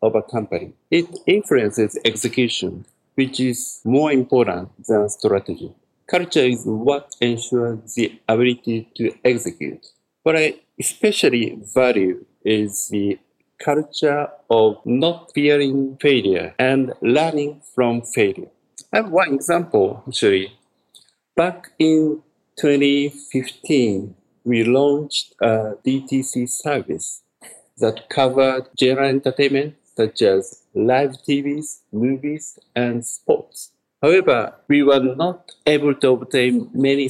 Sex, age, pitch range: male, 50-69, 120-150 Hz